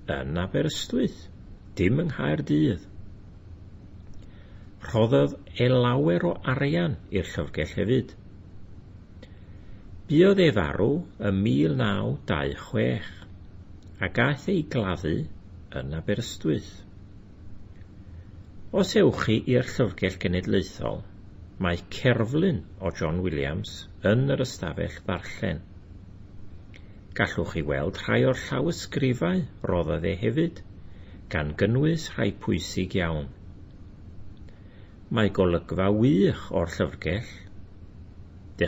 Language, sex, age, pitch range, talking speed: English, male, 60-79, 90-110 Hz, 90 wpm